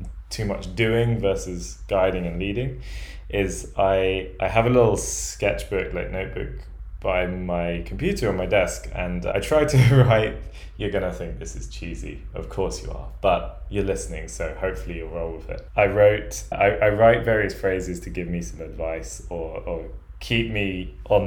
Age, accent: 20-39, British